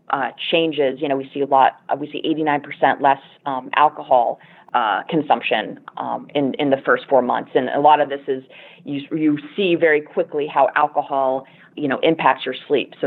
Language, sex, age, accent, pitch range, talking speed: English, female, 30-49, American, 130-155 Hz, 195 wpm